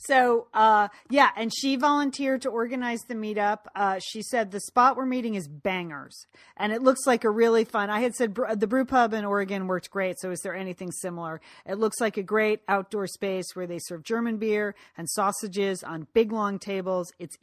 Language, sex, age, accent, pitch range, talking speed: English, female, 40-59, American, 190-255 Hz, 205 wpm